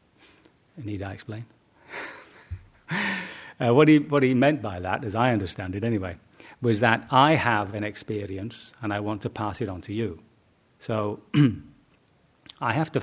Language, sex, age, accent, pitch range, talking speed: English, male, 40-59, British, 95-115 Hz, 160 wpm